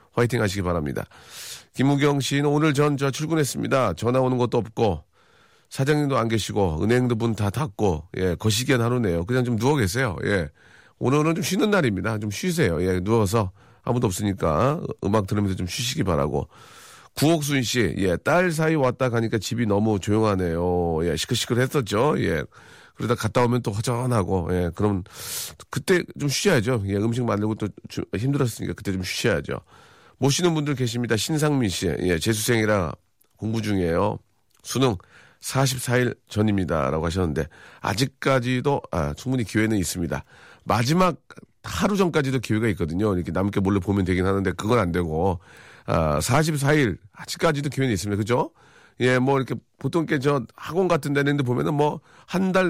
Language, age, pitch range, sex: Korean, 40-59, 100-140 Hz, male